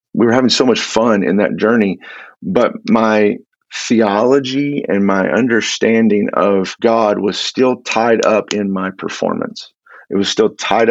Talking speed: 155 wpm